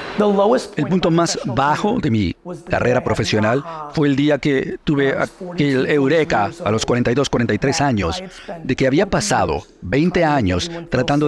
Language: Spanish